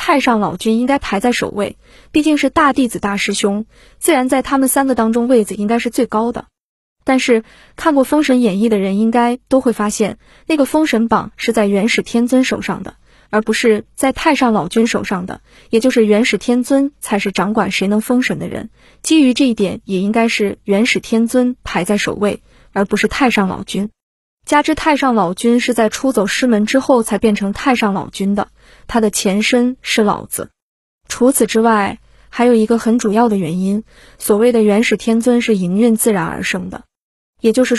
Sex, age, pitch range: female, 20-39, 210-255 Hz